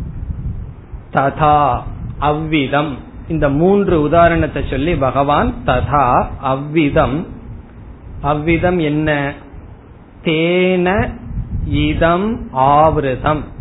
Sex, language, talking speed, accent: male, Tamil, 50 wpm, native